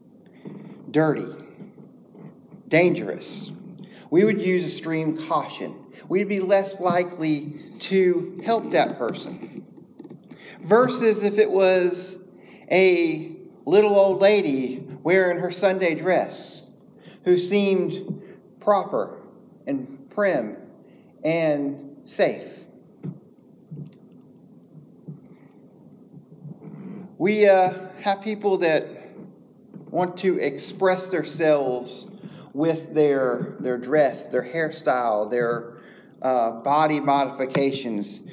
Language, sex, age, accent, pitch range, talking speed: English, male, 40-59, American, 150-195 Hz, 85 wpm